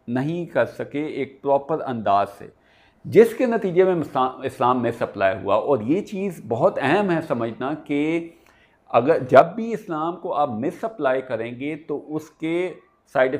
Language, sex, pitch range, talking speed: Urdu, male, 115-160 Hz, 165 wpm